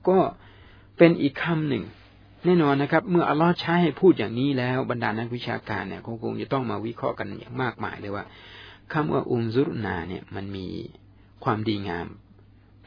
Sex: male